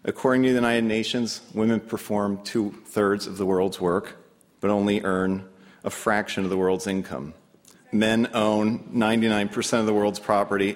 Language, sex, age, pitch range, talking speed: English, male, 40-59, 95-120 Hz, 155 wpm